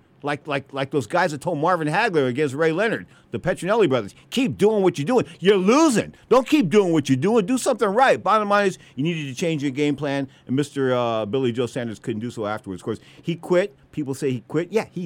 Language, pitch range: English, 130-185 Hz